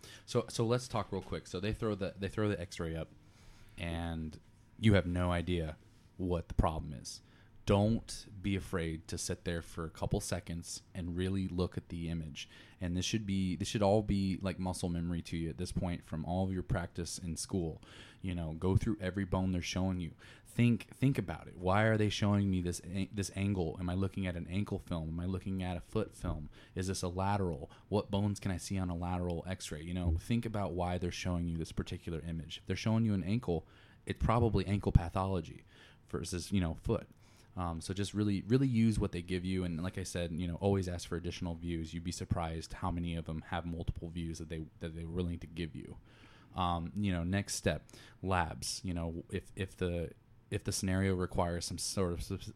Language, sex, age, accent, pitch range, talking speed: English, male, 20-39, American, 85-100 Hz, 225 wpm